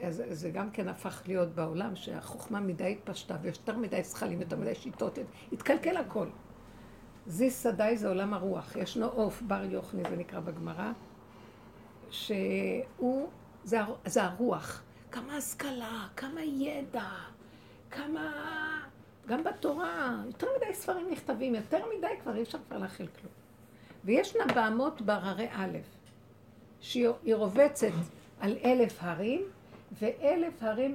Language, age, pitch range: Hebrew, 60-79, 180-245 Hz